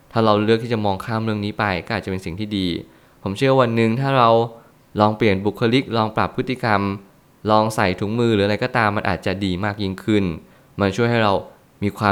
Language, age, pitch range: Thai, 20-39, 100-115 Hz